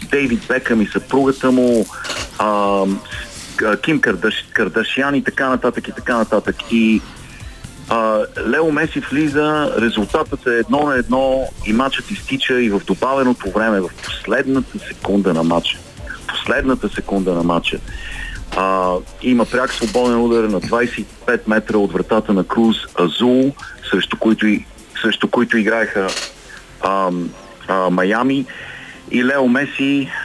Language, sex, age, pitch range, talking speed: Bulgarian, male, 40-59, 105-125 Hz, 125 wpm